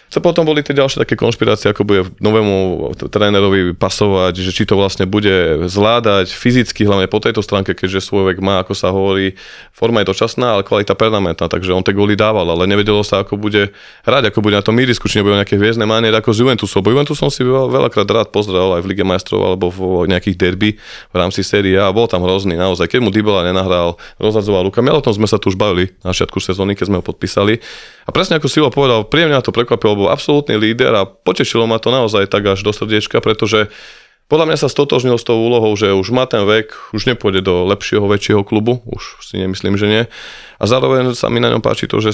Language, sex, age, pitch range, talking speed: Slovak, male, 20-39, 95-110 Hz, 220 wpm